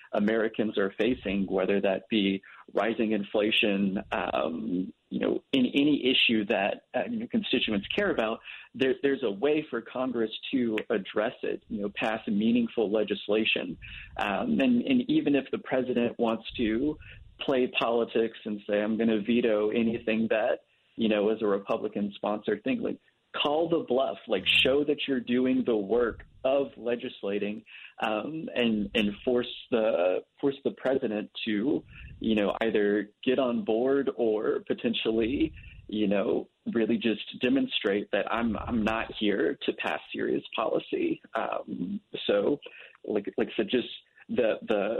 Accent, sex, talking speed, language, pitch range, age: American, male, 150 wpm, English, 105-140 Hz, 40-59